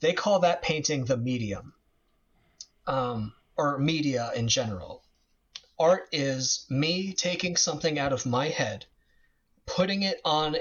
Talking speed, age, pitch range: 130 wpm, 30-49, 120-155 Hz